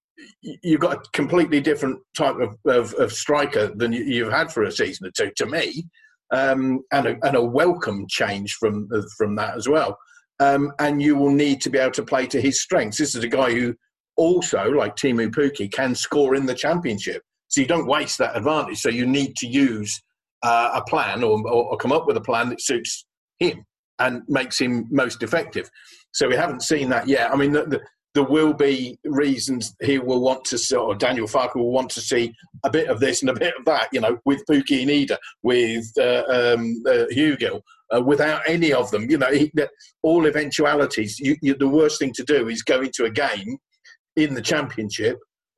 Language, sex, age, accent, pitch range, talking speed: English, male, 50-69, British, 125-155 Hz, 200 wpm